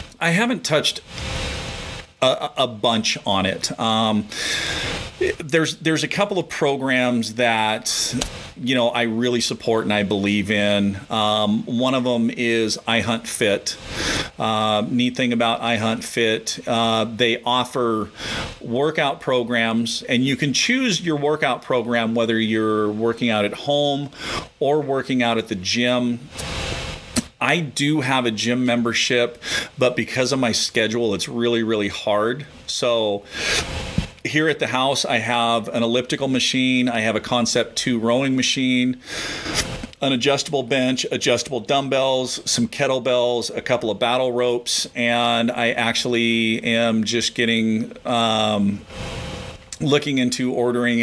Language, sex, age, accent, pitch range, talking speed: English, male, 40-59, American, 110-125 Hz, 135 wpm